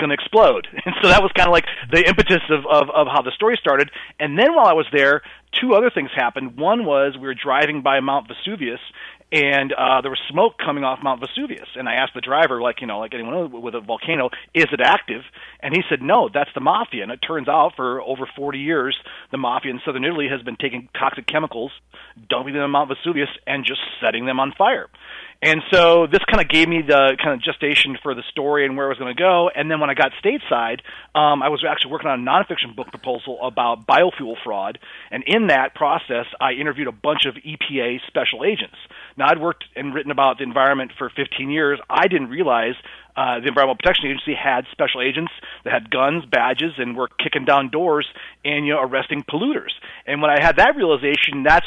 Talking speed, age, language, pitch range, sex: 225 wpm, 40-59, English, 135-155 Hz, male